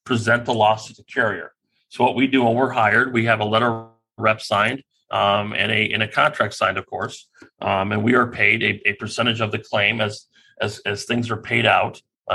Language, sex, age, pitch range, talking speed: English, male, 30-49, 110-125 Hz, 230 wpm